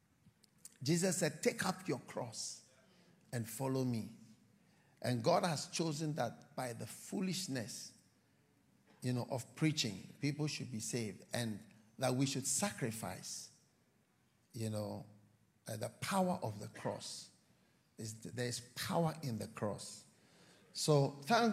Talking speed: 125 wpm